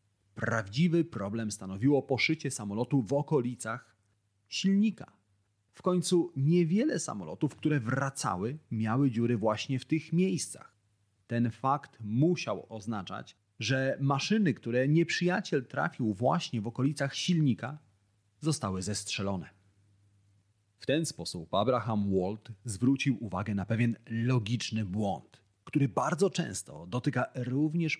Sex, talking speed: male, 110 wpm